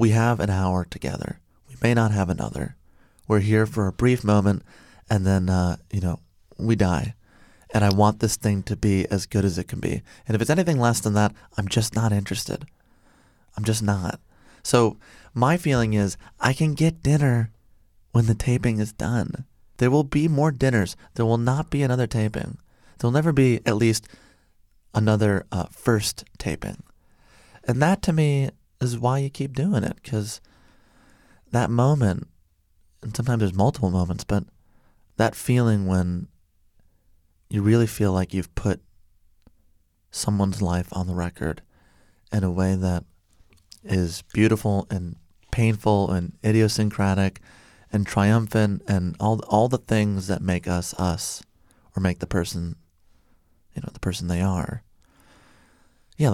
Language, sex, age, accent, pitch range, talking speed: English, male, 30-49, American, 90-115 Hz, 160 wpm